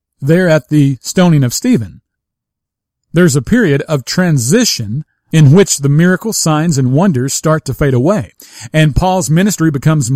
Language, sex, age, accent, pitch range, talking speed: English, male, 50-69, American, 130-175 Hz, 155 wpm